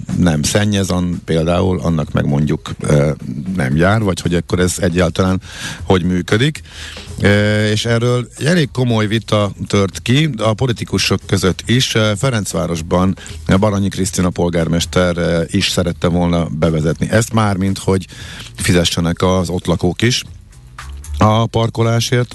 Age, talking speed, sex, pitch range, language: 50-69, 120 wpm, male, 85-110 Hz, Hungarian